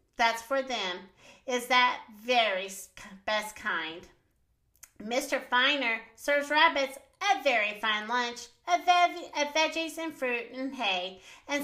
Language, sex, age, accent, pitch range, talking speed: English, female, 40-59, American, 225-325 Hz, 120 wpm